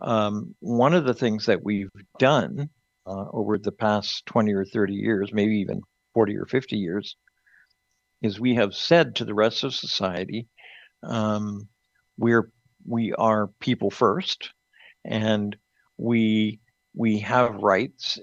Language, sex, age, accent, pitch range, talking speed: English, male, 60-79, American, 105-120 Hz, 140 wpm